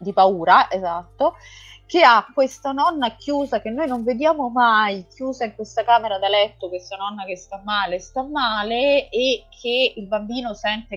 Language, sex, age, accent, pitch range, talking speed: Italian, female, 30-49, native, 180-230 Hz, 170 wpm